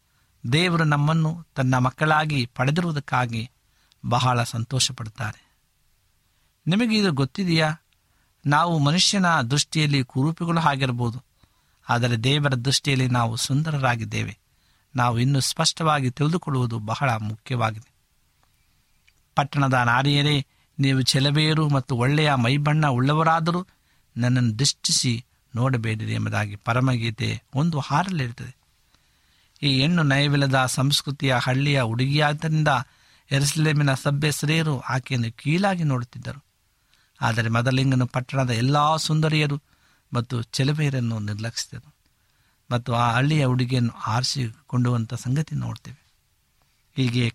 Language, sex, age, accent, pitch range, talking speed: Kannada, male, 60-79, native, 120-150 Hz, 85 wpm